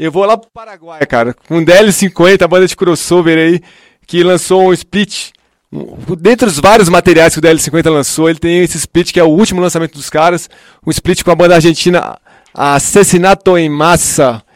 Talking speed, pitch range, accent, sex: 190 wpm, 165-195 Hz, Brazilian, male